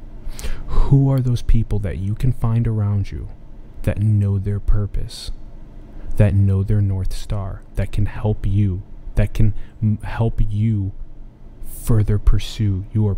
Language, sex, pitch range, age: English, male, 100-110 Hz, 20-39